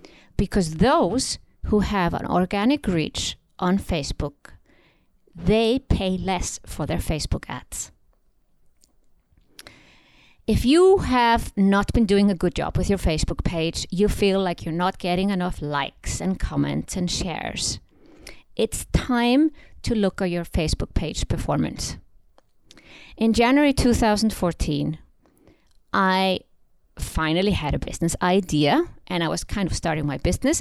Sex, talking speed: female, 130 wpm